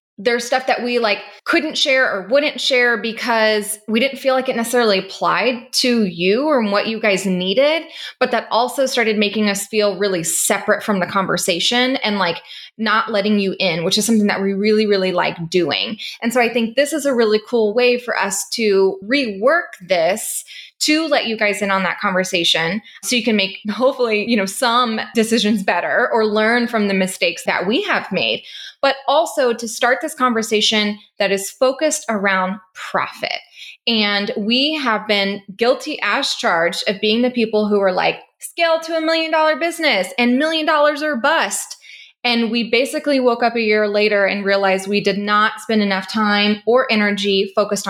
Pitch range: 200-255 Hz